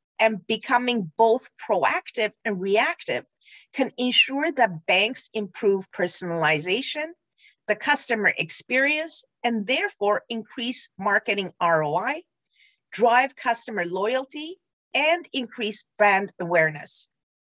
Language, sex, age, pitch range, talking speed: English, female, 50-69, 190-265 Hz, 95 wpm